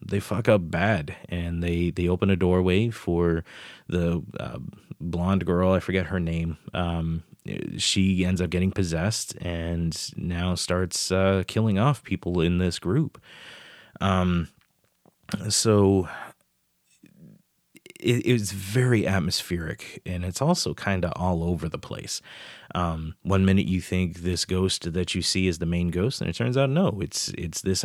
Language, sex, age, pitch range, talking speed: English, male, 30-49, 85-100 Hz, 155 wpm